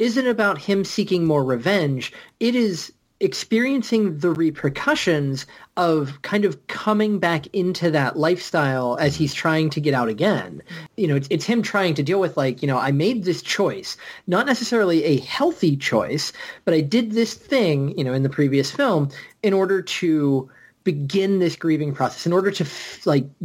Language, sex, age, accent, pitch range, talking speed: English, male, 30-49, American, 140-185 Hz, 175 wpm